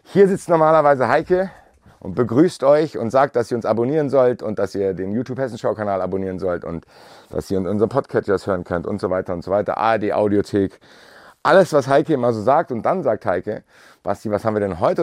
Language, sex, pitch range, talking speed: German, male, 100-145 Hz, 215 wpm